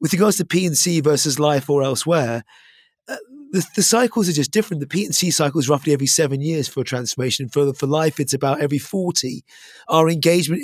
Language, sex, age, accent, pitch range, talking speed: English, male, 30-49, British, 140-160 Hz, 185 wpm